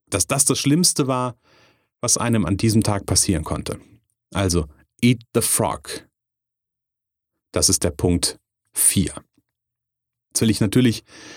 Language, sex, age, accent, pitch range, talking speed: German, male, 30-49, German, 105-135 Hz, 130 wpm